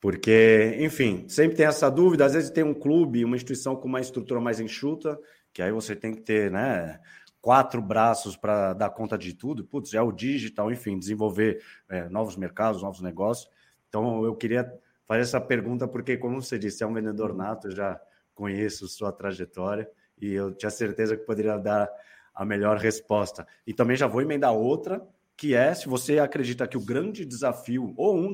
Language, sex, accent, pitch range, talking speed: Portuguese, male, Brazilian, 105-130 Hz, 185 wpm